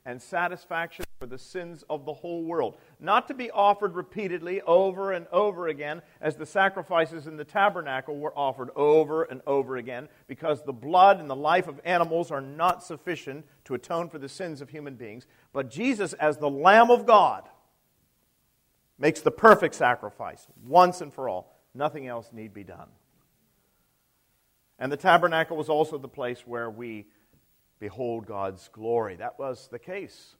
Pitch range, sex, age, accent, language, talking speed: 120-165 Hz, male, 50-69, American, English, 170 wpm